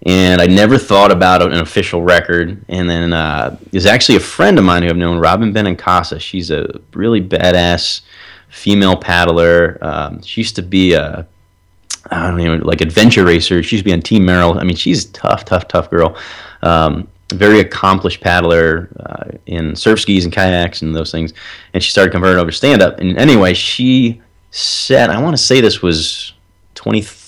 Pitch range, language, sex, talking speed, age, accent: 85-100 Hz, English, male, 185 wpm, 30-49, American